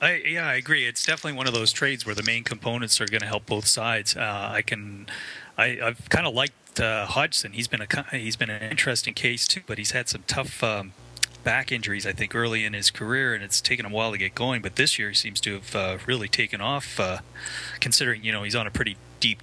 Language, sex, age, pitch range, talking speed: English, male, 30-49, 105-130 Hz, 250 wpm